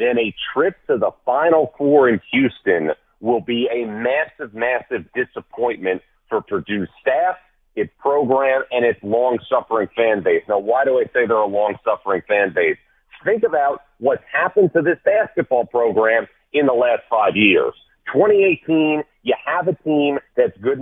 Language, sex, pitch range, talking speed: English, male, 115-150 Hz, 160 wpm